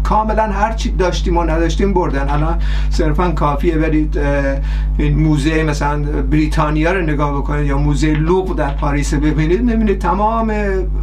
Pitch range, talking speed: 155-185 Hz, 135 wpm